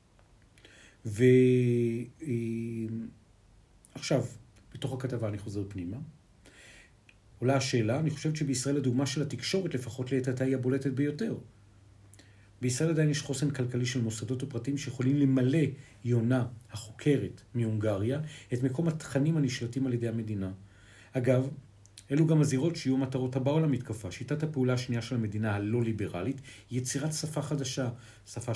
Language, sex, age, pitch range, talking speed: Hebrew, male, 50-69, 110-145 Hz, 125 wpm